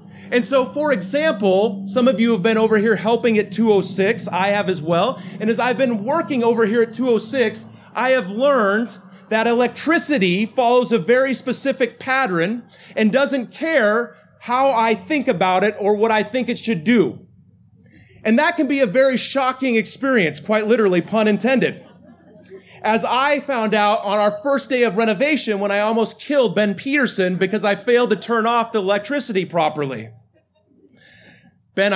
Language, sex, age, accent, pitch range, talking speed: English, male, 30-49, American, 200-250 Hz, 170 wpm